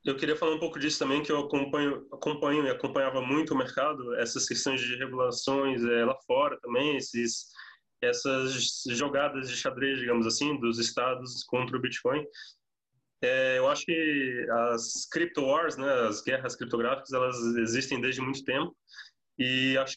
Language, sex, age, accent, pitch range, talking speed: Portuguese, male, 20-39, Brazilian, 125-145 Hz, 160 wpm